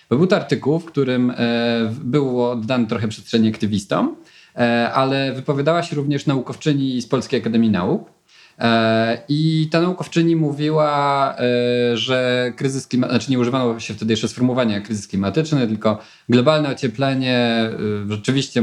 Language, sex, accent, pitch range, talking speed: Polish, male, native, 120-150 Hz, 125 wpm